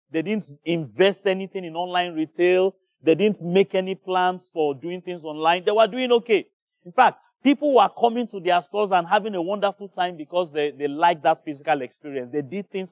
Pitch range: 140-195 Hz